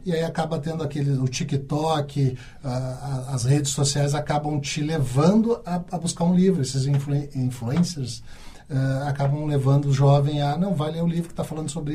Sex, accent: male, Brazilian